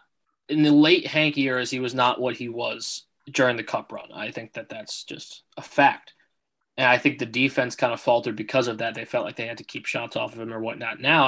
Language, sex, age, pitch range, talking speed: English, male, 20-39, 120-135 Hz, 250 wpm